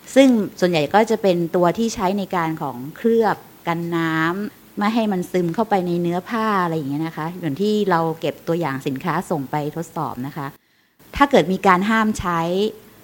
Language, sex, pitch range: Thai, female, 165-210 Hz